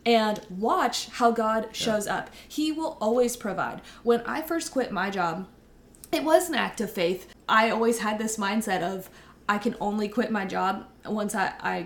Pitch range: 195-235 Hz